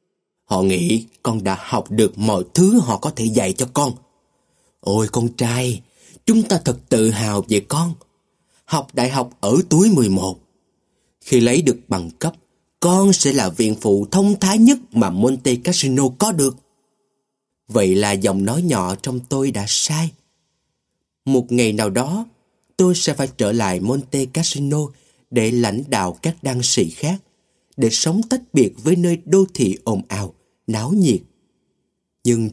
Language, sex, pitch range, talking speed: Vietnamese, male, 115-185 Hz, 160 wpm